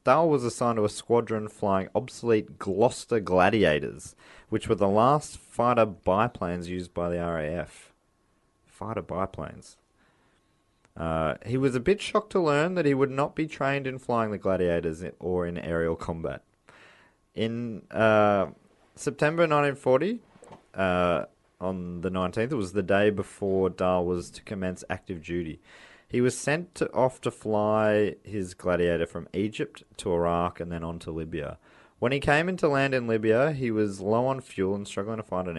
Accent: Australian